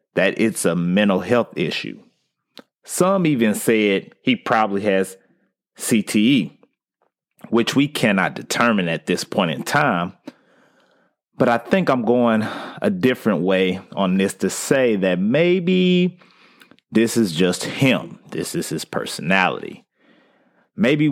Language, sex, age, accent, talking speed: English, male, 30-49, American, 130 wpm